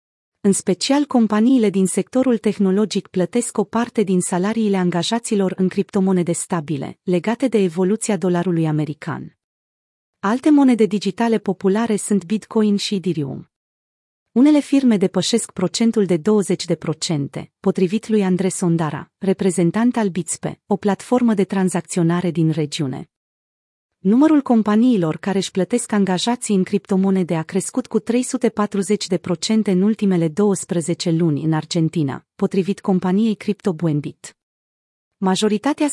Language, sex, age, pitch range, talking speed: Romanian, female, 30-49, 175-220 Hz, 115 wpm